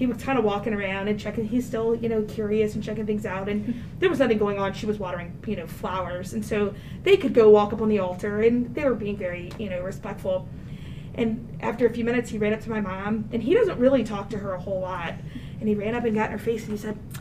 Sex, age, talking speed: female, 20-39, 280 wpm